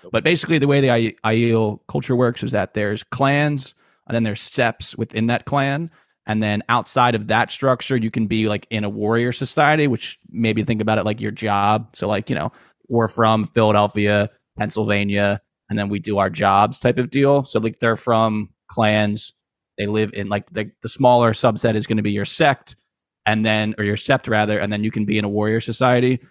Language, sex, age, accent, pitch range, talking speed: English, male, 20-39, American, 105-125 Hz, 210 wpm